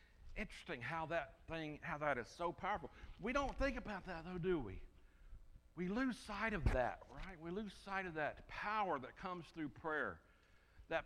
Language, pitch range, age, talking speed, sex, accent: English, 145-195 Hz, 60-79, 185 wpm, male, American